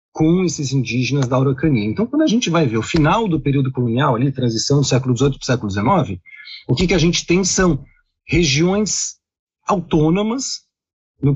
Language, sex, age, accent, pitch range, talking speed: Portuguese, male, 40-59, Brazilian, 120-160 Hz, 185 wpm